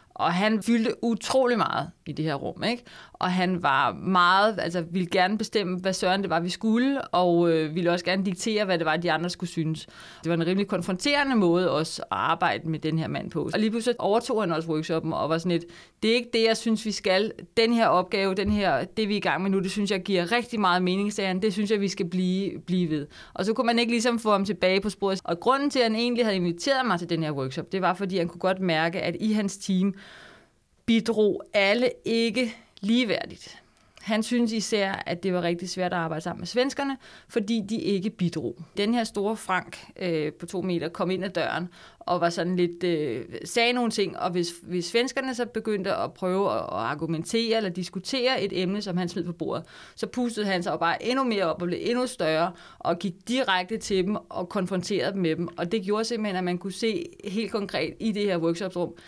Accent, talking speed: native, 230 wpm